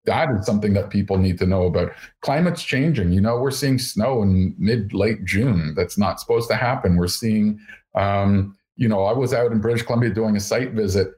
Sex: male